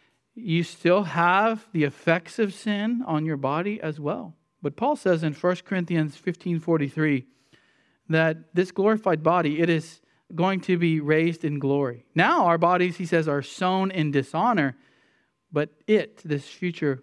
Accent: American